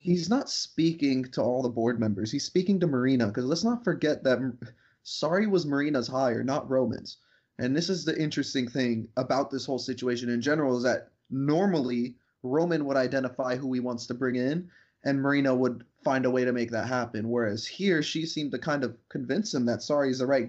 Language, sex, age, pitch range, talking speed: English, male, 20-39, 125-150 Hz, 210 wpm